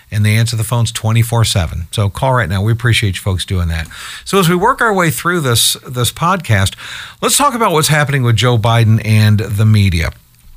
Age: 50-69